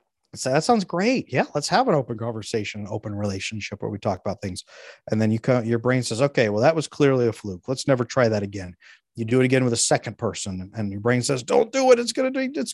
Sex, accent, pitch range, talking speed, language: male, American, 110-150 Hz, 265 wpm, English